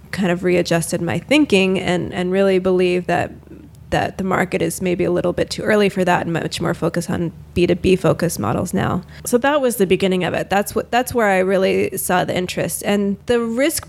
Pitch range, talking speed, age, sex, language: 180-205 Hz, 225 wpm, 20-39, female, English